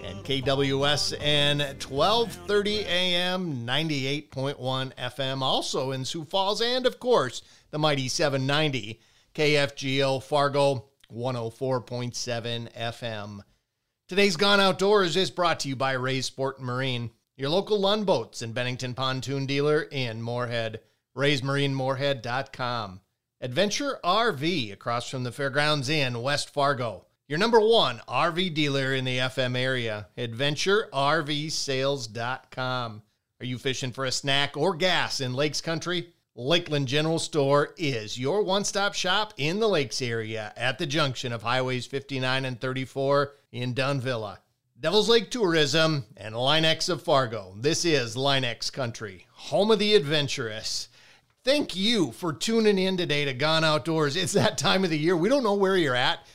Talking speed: 135 wpm